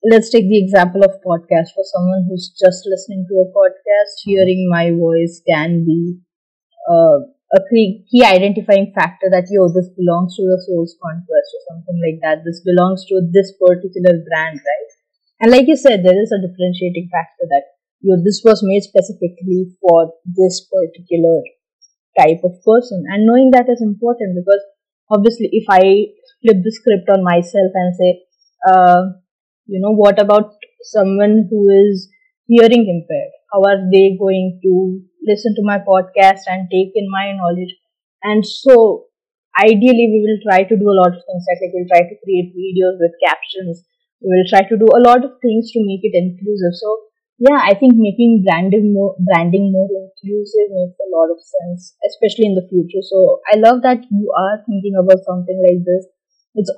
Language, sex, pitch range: English, female, 180-220 Hz